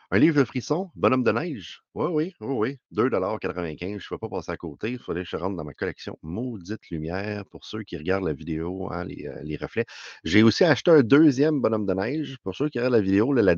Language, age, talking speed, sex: French, 30-49, 240 wpm, male